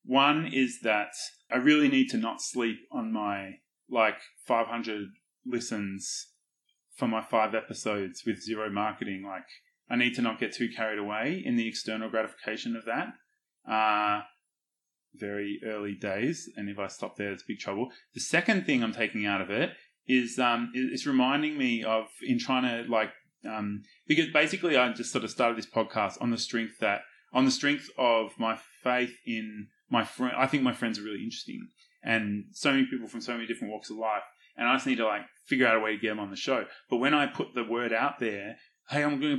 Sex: male